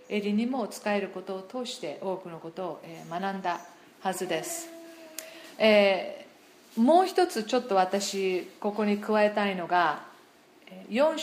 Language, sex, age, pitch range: Japanese, female, 40-59, 200-295 Hz